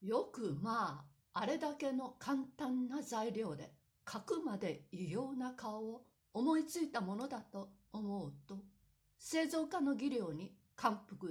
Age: 60-79